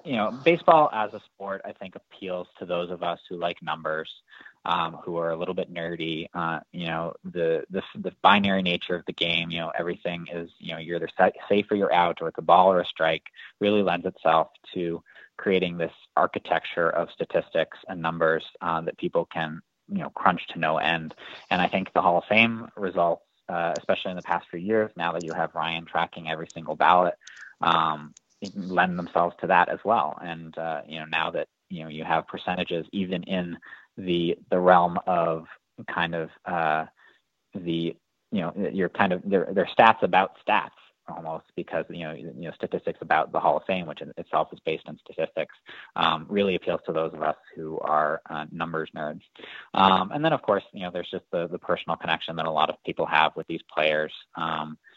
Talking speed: 205 wpm